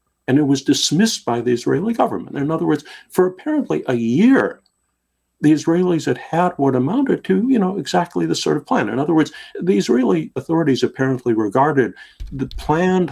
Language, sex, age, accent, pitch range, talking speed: English, male, 50-69, American, 110-165 Hz, 180 wpm